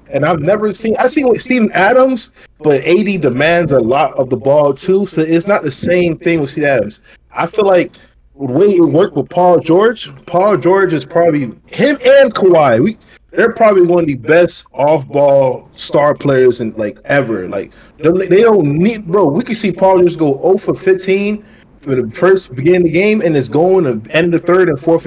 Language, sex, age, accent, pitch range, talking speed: English, male, 20-39, American, 145-190 Hz, 205 wpm